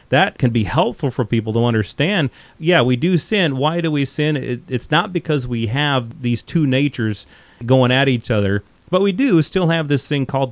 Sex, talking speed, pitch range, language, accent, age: male, 205 wpm, 110-145 Hz, English, American, 30-49